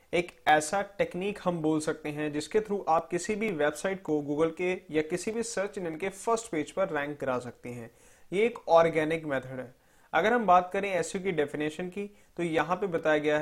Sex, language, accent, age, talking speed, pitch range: male, Hindi, native, 30-49, 210 wpm, 150-185 Hz